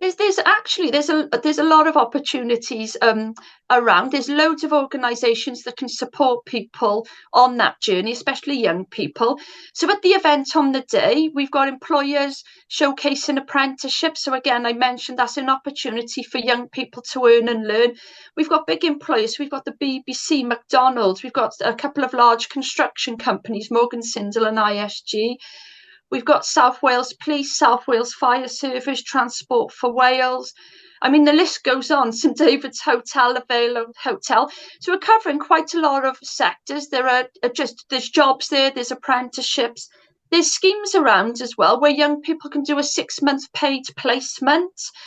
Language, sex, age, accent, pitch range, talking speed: English, female, 40-59, British, 245-300 Hz, 170 wpm